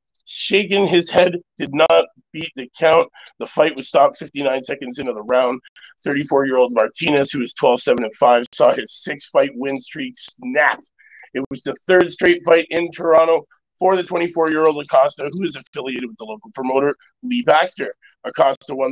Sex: male